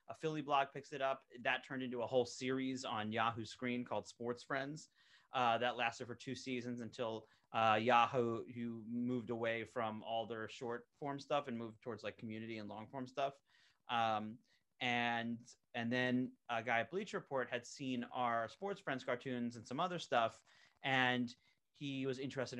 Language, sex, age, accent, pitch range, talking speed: English, male, 30-49, American, 110-130 Hz, 180 wpm